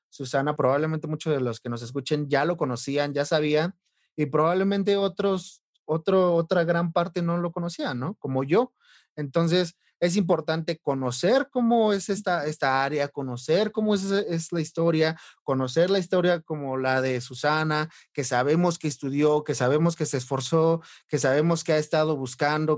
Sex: male